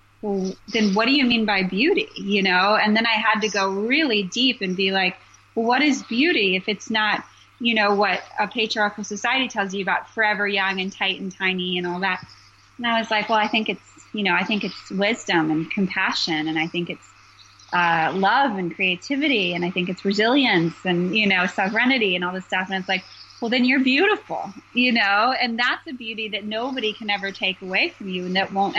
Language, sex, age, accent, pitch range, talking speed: English, female, 20-39, American, 190-240 Hz, 225 wpm